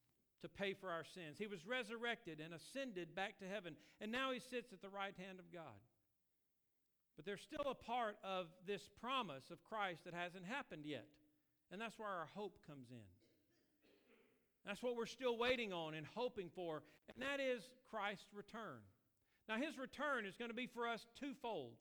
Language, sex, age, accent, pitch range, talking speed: English, male, 50-69, American, 160-220 Hz, 185 wpm